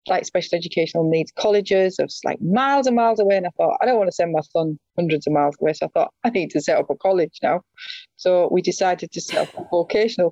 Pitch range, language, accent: 160-195 Hz, English, British